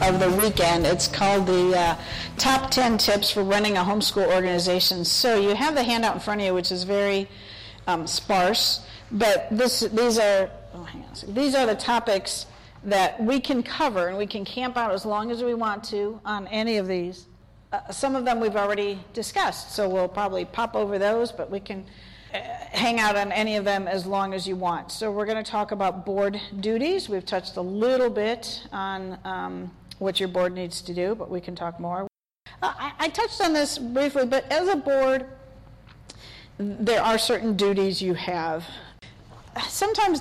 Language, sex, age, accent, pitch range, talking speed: English, female, 50-69, American, 185-230 Hz, 195 wpm